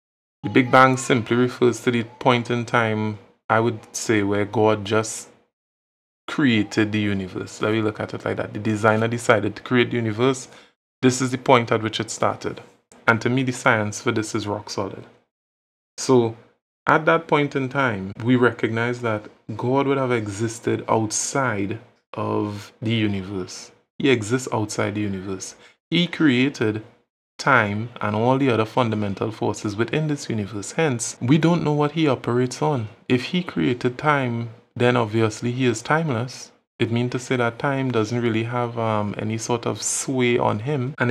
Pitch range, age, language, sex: 110-130 Hz, 20-39, English, male